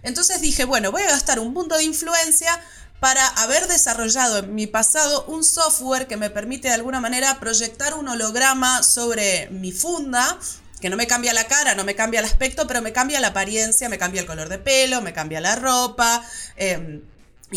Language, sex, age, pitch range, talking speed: Spanish, female, 30-49, 210-265 Hz, 195 wpm